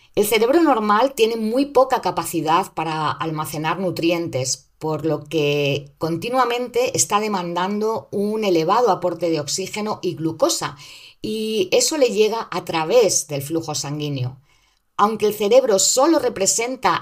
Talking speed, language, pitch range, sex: 130 wpm, Spanish, 165-220 Hz, female